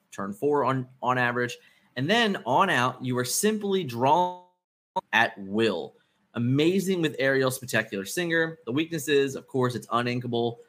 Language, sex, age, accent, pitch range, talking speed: English, male, 20-39, American, 115-150 Hz, 145 wpm